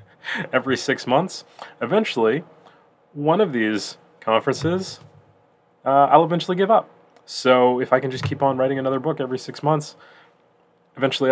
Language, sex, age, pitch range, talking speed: English, male, 30-49, 110-135 Hz, 145 wpm